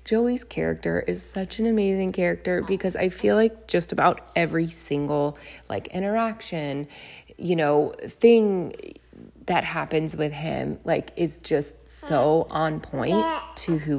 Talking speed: 135 wpm